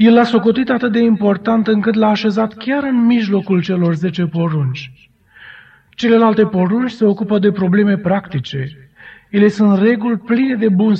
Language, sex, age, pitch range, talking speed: Romanian, male, 30-49, 170-215 Hz, 155 wpm